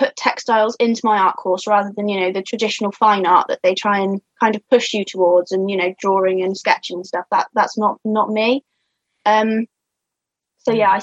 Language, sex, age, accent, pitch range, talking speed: English, female, 20-39, British, 200-235 Hz, 220 wpm